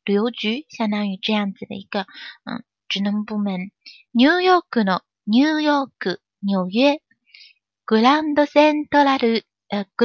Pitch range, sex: 205-275 Hz, female